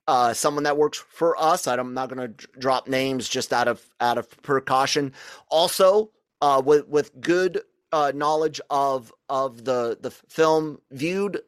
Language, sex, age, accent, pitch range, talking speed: English, male, 30-49, American, 125-165 Hz, 165 wpm